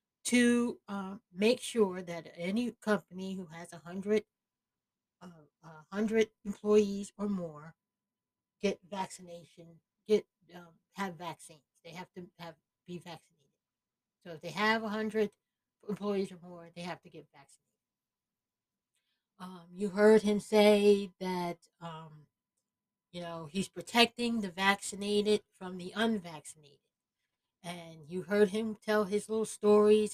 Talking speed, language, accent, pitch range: 135 wpm, English, American, 175-210 Hz